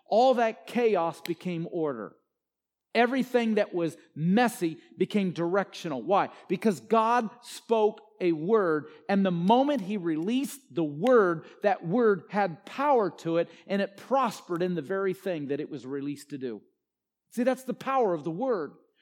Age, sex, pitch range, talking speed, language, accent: 50-69, male, 195-245 Hz, 160 wpm, English, American